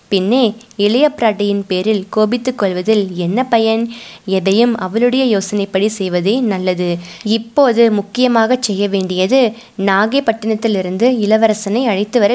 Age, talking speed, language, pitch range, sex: 20-39, 105 wpm, Tamil, 200-240 Hz, female